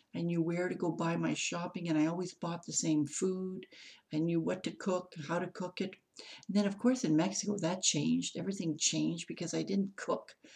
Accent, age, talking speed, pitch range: American, 60-79, 215 wpm, 160-195 Hz